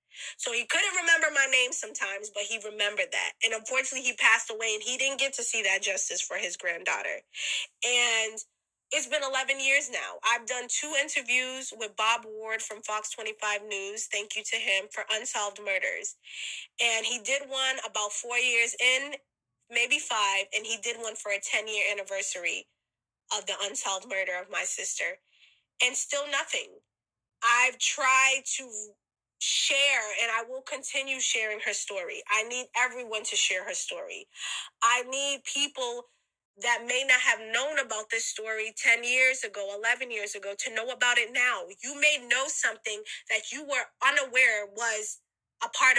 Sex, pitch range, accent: female, 215-275 Hz, American